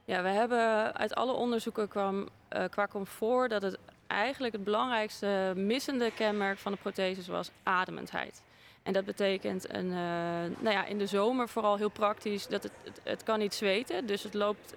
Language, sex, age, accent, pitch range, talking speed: Dutch, female, 20-39, Dutch, 195-225 Hz, 185 wpm